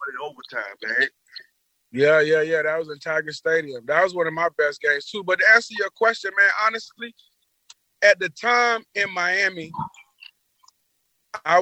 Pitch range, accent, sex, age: 160-220 Hz, American, male, 30-49